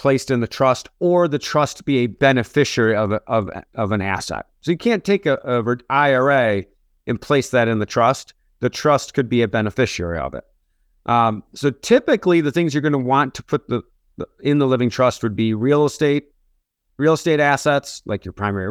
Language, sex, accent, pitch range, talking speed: English, male, American, 105-150 Hz, 205 wpm